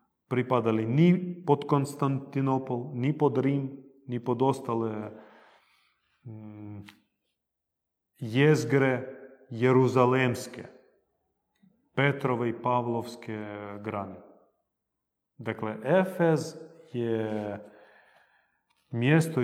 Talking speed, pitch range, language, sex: 60 wpm, 110-135 Hz, Croatian, male